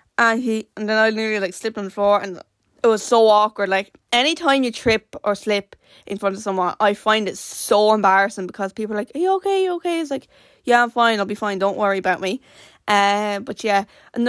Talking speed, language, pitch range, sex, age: 240 wpm, English, 200-240 Hz, female, 10-29